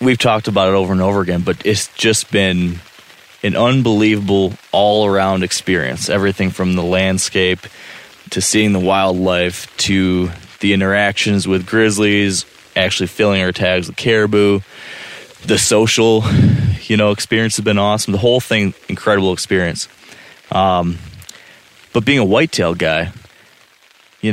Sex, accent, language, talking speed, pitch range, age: male, American, English, 135 wpm, 95-110 Hz, 20-39